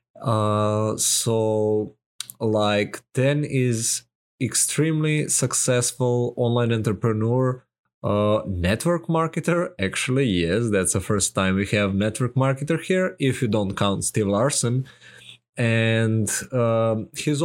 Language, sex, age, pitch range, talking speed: English, male, 20-39, 105-125 Hz, 110 wpm